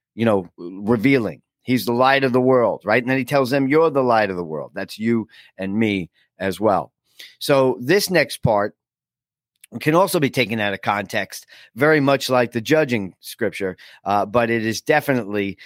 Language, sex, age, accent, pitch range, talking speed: English, male, 40-59, American, 105-150 Hz, 190 wpm